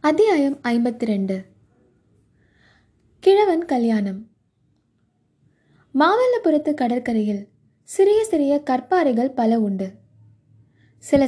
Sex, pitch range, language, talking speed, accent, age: female, 220-310 Hz, Tamil, 70 wpm, native, 20-39